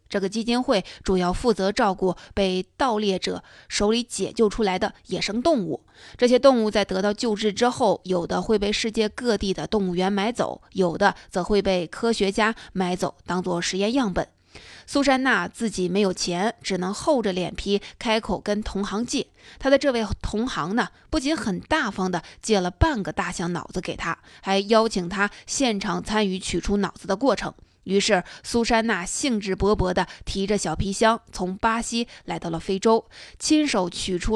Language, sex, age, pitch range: Chinese, female, 20-39, 185-225 Hz